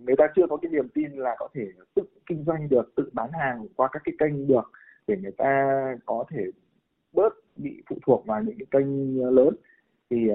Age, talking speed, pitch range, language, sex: 20-39, 215 wpm, 115-150 Hz, Vietnamese, male